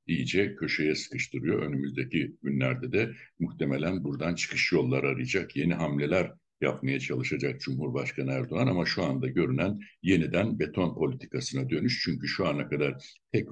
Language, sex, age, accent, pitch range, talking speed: Turkish, male, 60-79, native, 70-105 Hz, 135 wpm